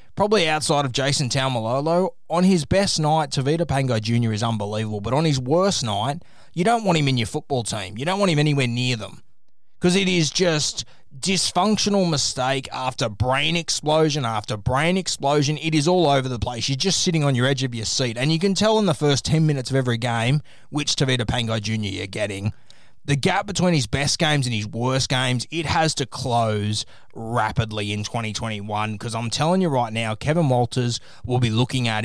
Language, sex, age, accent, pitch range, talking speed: English, male, 20-39, Australian, 115-150 Hz, 200 wpm